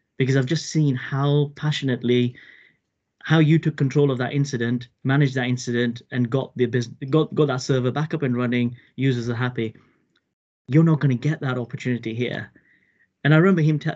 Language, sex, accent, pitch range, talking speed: English, male, British, 120-145 Hz, 180 wpm